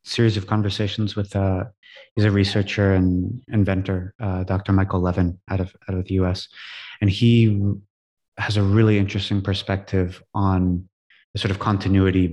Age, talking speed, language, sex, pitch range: 30-49, 160 wpm, English, male, 90-105 Hz